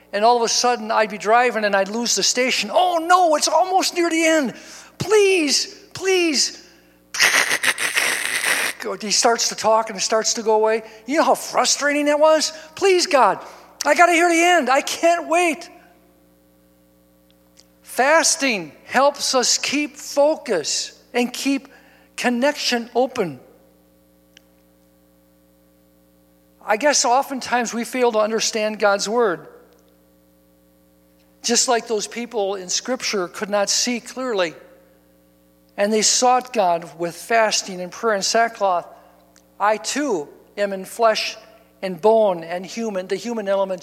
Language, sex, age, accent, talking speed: English, male, 60-79, American, 135 wpm